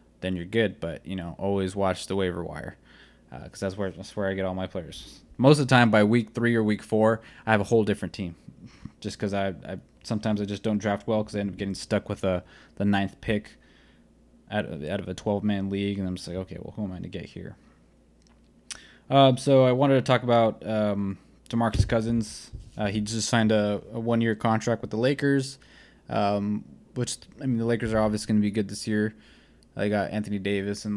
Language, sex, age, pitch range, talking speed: English, male, 20-39, 100-115 Hz, 230 wpm